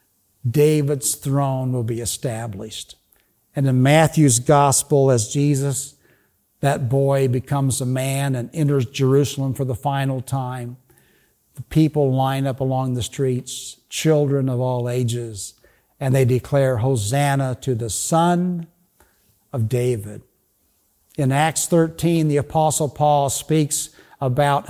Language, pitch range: English, 120-155 Hz